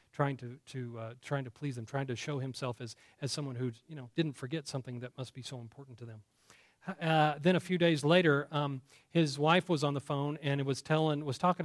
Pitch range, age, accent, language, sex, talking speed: 140-170 Hz, 40-59, American, English, male, 235 wpm